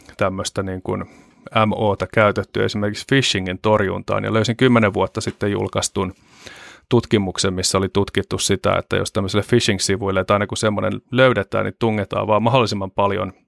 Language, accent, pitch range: Finnish, native, 95-110 Hz